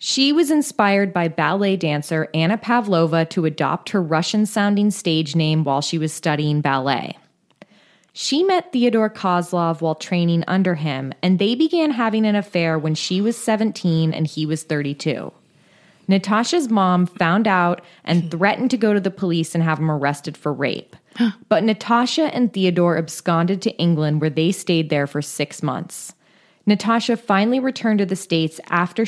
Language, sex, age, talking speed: English, female, 20-39, 165 wpm